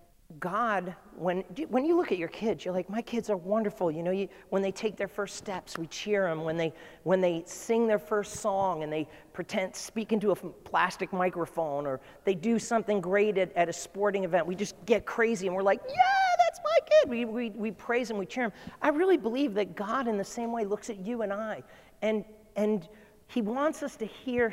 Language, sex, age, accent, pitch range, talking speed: English, male, 40-59, American, 185-230 Hz, 225 wpm